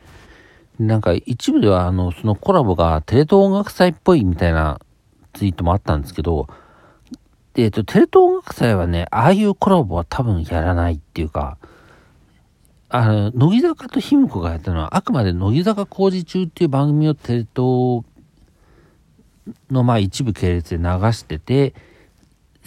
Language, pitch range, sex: Japanese, 85-135 Hz, male